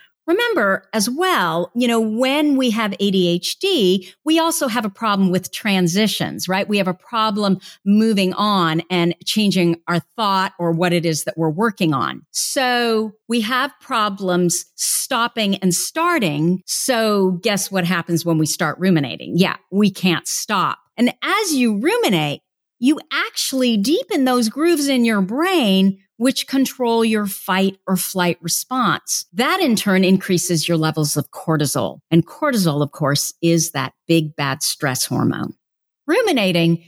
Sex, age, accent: female, 50-69, American